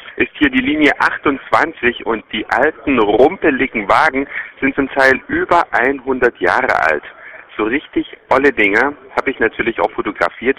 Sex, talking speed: male, 145 wpm